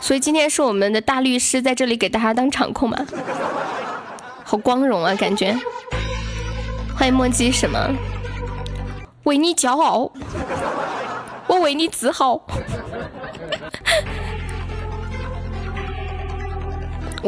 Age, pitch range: 10-29, 205-260 Hz